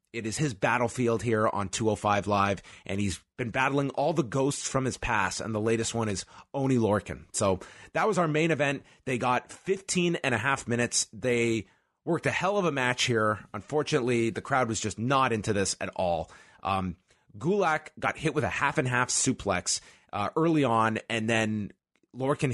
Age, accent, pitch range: 30-49, American, 105-140 Hz